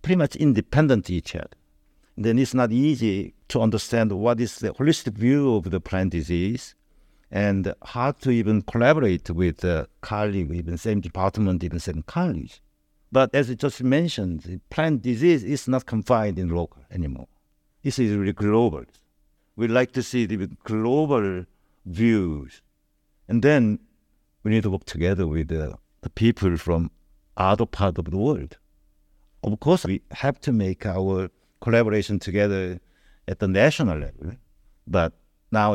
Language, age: English, 60-79